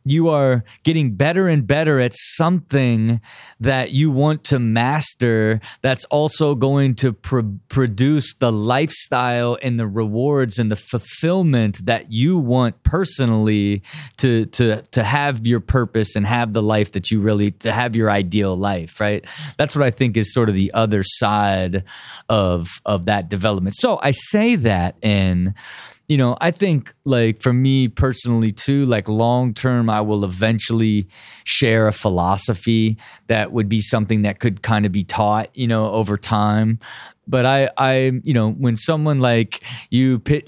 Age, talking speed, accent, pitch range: 30-49, 170 wpm, American, 110-135 Hz